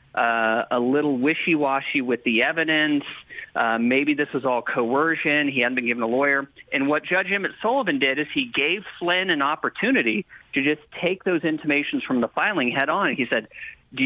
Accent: American